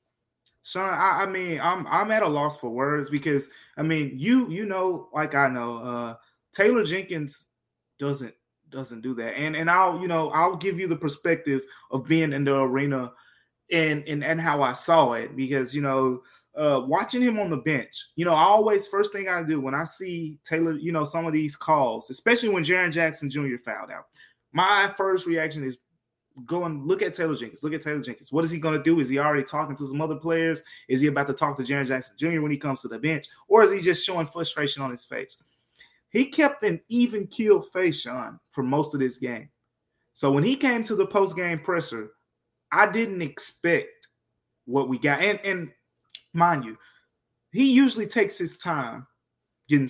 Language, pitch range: English, 140-185 Hz